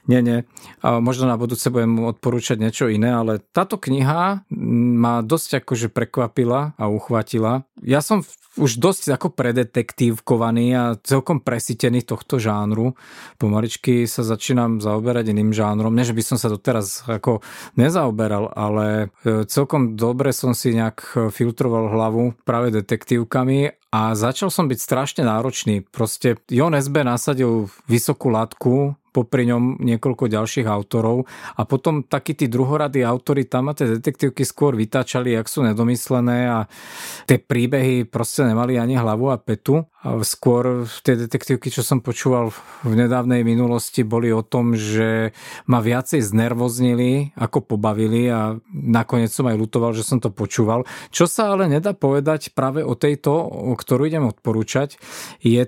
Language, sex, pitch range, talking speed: Slovak, male, 115-135 Hz, 145 wpm